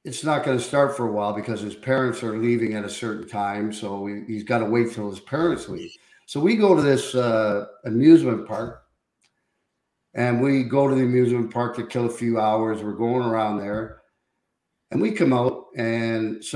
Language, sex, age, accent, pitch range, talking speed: English, male, 50-69, American, 115-135 Hz, 200 wpm